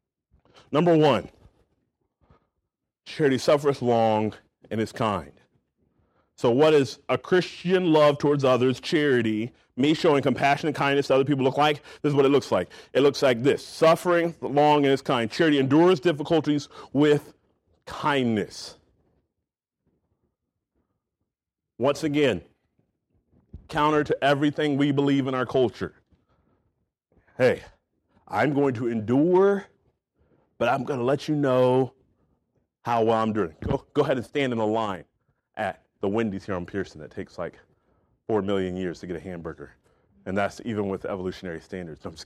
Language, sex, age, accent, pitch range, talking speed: English, male, 40-59, American, 105-150 Hz, 150 wpm